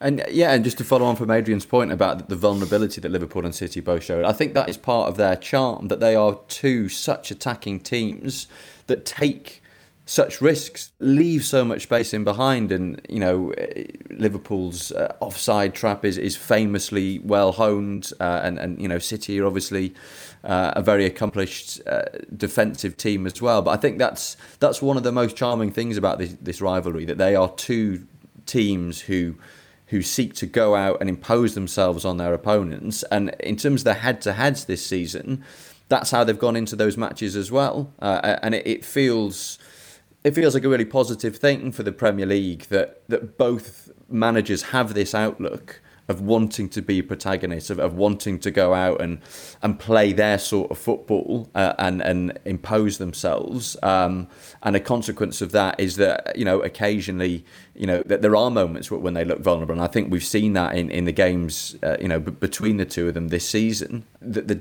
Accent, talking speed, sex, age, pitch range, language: British, 200 wpm, male, 20-39, 95-115 Hz, English